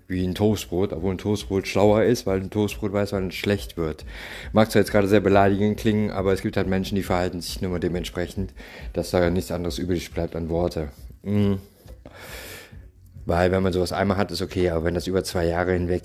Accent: German